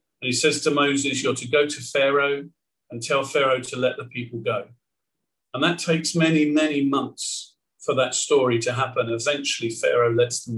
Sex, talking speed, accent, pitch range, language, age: male, 180 wpm, British, 140-180 Hz, English, 50-69